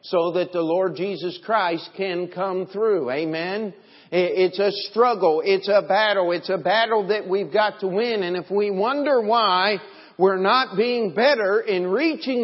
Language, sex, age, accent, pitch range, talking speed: English, male, 50-69, American, 190-245 Hz, 170 wpm